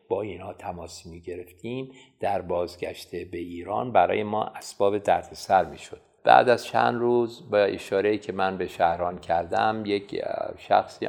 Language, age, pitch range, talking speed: Persian, 50-69, 90-135 Hz, 150 wpm